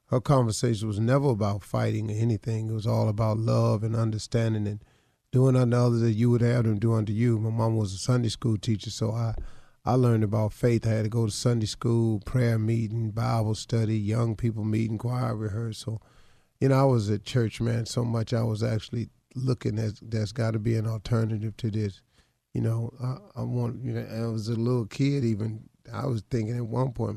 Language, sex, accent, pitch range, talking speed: English, male, American, 110-125 Hz, 215 wpm